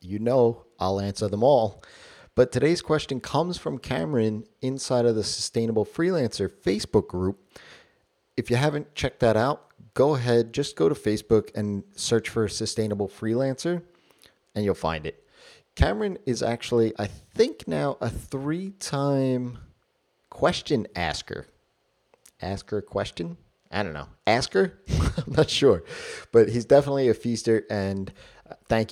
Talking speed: 145 wpm